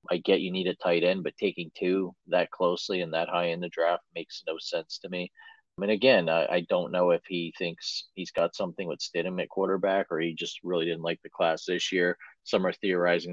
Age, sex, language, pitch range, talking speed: 40-59, male, English, 85-105 Hz, 240 wpm